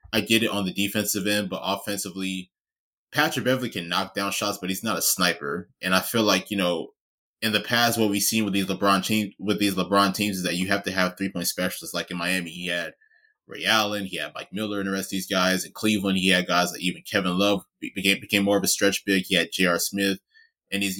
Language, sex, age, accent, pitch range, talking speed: English, male, 20-39, American, 95-105 Hz, 250 wpm